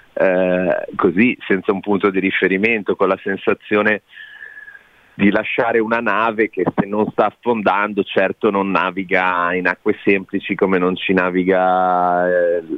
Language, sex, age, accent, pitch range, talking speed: Italian, male, 30-49, native, 100-130 Hz, 140 wpm